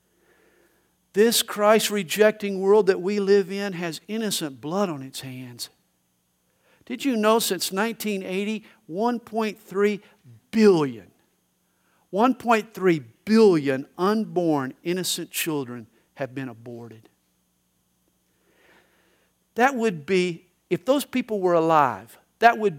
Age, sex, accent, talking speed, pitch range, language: 50-69, male, American, 105 wpm, 150-230 Hz, English